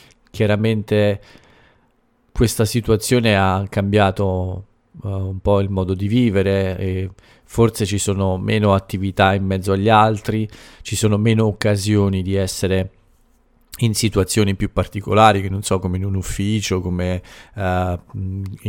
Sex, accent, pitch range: male, Italian, 95-110 Hz